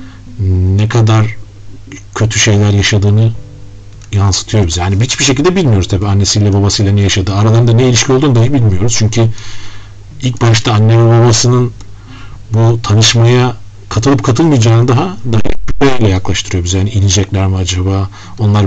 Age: 40-59